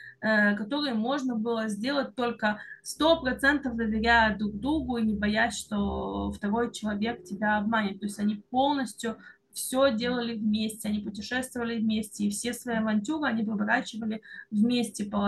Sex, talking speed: female, 135 wpm